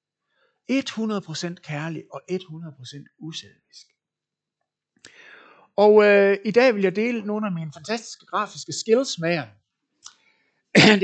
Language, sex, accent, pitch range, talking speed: Danish, male, native, 135-195 Hz, 110 wpm